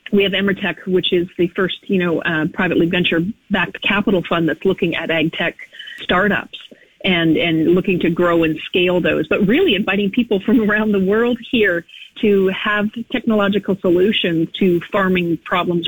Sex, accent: female, American